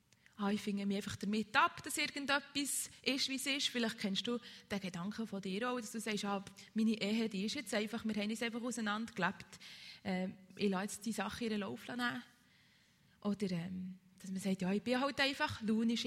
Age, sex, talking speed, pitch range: 20-39, female, 205 wpm, 200-250 Hz